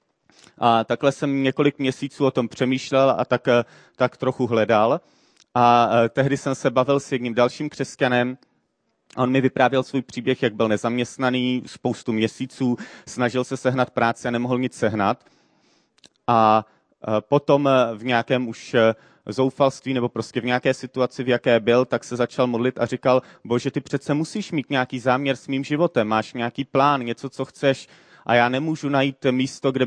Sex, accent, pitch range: male, native, 120-135 Hz